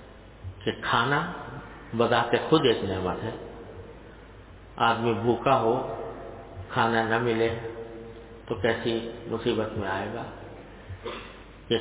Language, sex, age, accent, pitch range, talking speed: English, male, 50-69, Indian, 100-135 Hz, 100 wpm